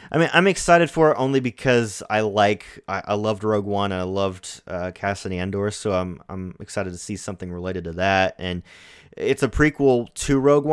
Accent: American